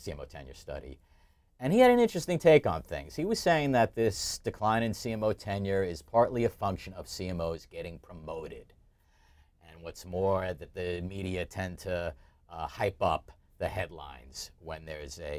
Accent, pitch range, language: American, 80-110 Hz, English